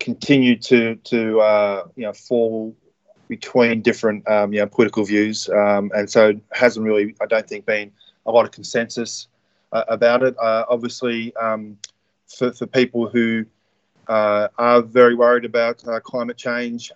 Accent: Australian